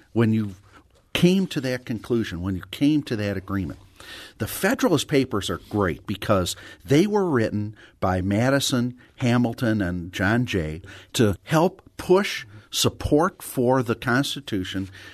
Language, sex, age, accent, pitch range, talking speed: English, male, 50-69, American, 100-140 Hz, 135 wpm